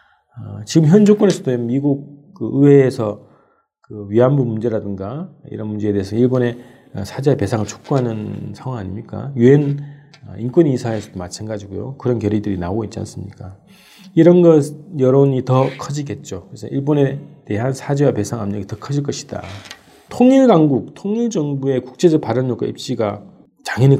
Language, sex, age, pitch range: Korean, male, 40-59, 110-145 Hz